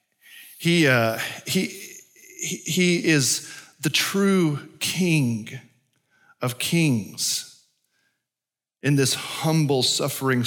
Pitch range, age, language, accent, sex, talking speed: 125-165 Hz, 40-59, English, American, male, 85 wpm